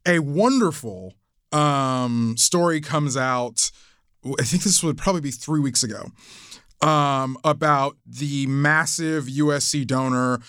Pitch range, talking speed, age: 125-160 Hz, 120 wpm, 20-39